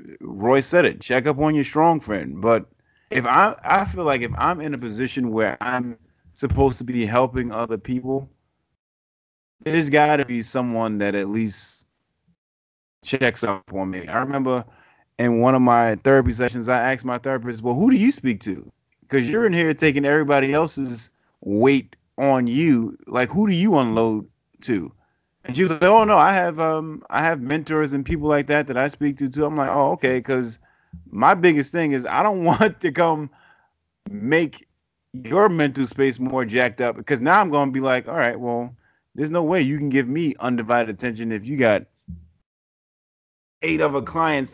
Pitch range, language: 120-155 Hz, English